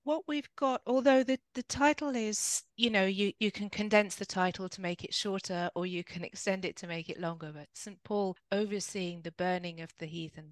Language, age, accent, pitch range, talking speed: English, 30-49, British, 155-185 Hz, 215 wpm